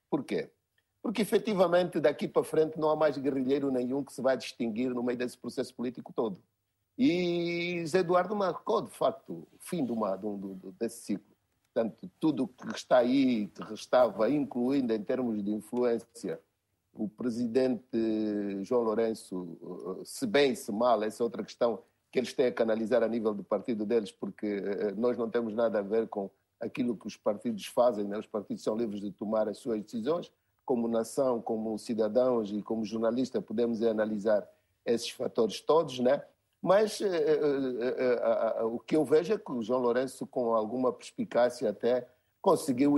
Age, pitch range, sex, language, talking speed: 50-69, 110-145 Hz, male, Portuguese, 165 wpm